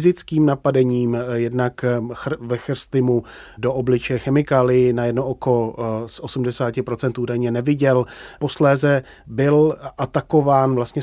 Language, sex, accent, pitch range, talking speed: Czech, male, native, 120-135 Hz, 90 wpm